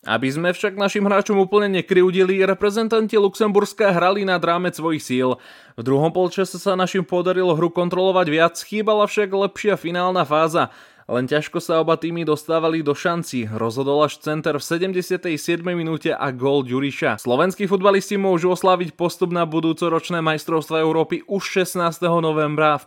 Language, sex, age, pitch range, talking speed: Slovak, male, 20-39, 140-175 Hz, 155 wpm